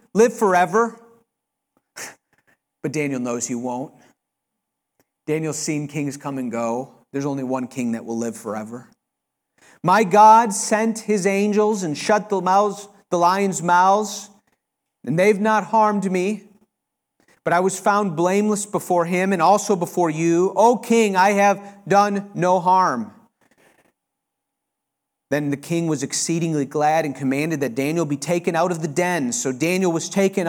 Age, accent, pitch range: 40-59, American, 155-205 Hz